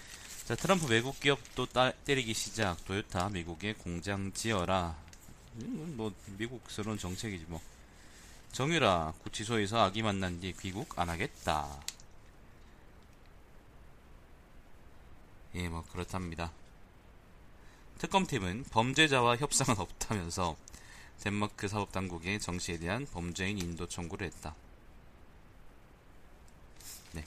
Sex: male